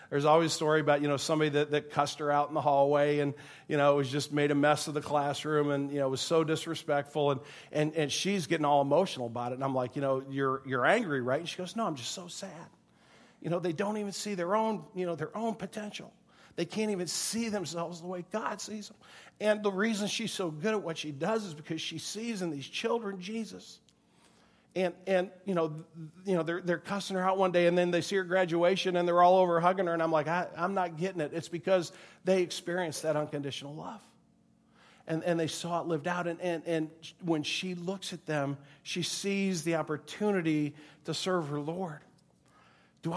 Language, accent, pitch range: English, American, 150-190 Hz